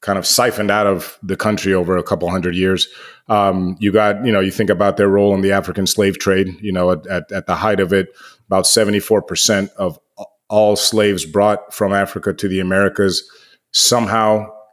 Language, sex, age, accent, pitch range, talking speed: English, male, 30-49, American, 95-110 Hz, 195 wpm